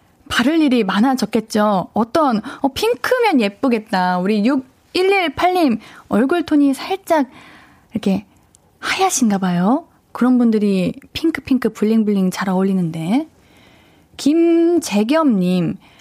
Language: Korean